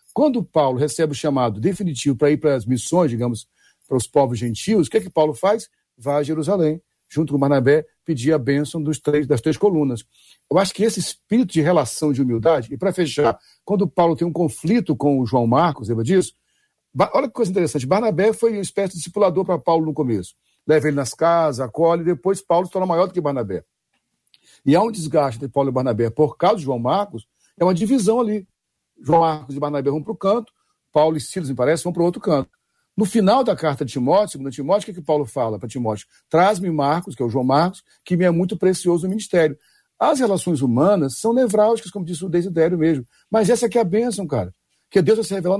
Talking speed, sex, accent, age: 230 wpm, male, Brazilian, 60-79